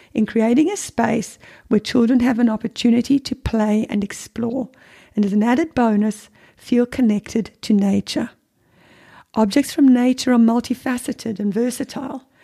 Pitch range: 220-265 Hz